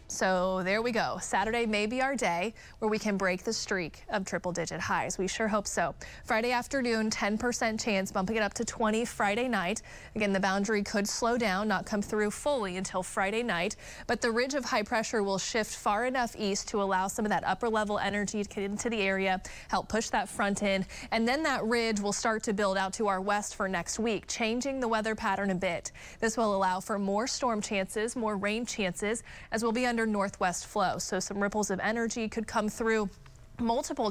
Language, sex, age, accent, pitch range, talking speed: English, female, 30-49, American, 195-230 Hz, 215 wpm